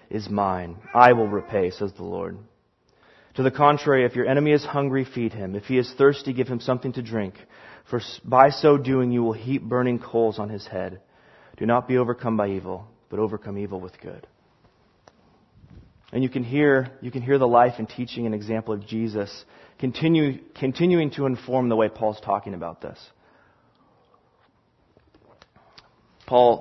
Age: 30-49